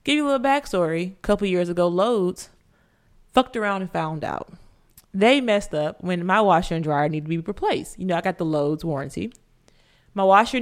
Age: 20-39